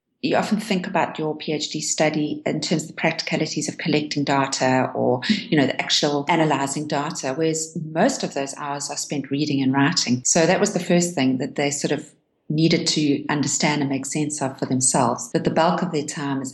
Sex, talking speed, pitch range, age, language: female, 210 wpm, 140-165 Hz, 40-59, English